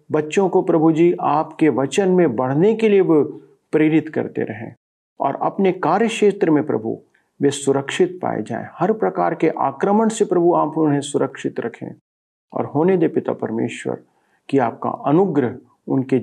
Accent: native